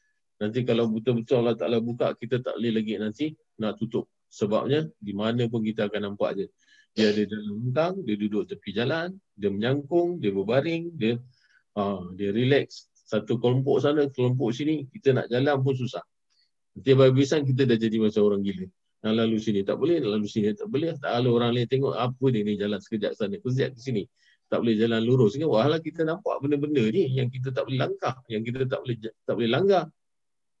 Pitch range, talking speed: 105-130 Hz, 200 wpm